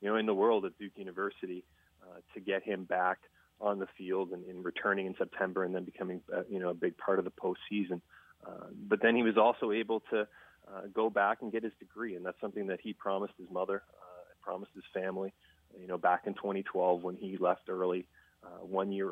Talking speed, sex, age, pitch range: 225 wpm, male, 30-49, 95-105 Hz